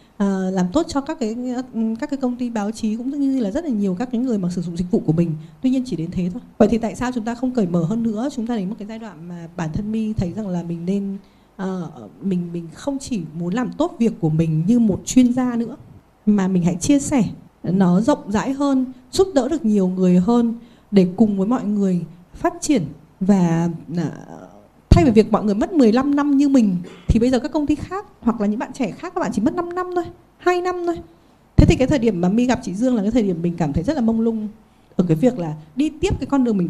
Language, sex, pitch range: Vietnamese, female, 185-255 Hz